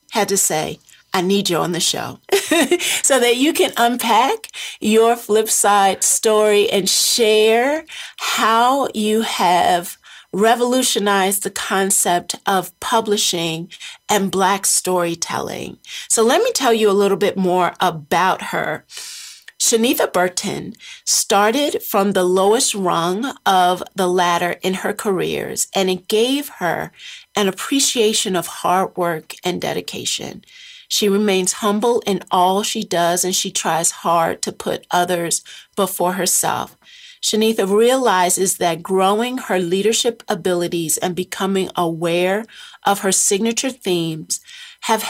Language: English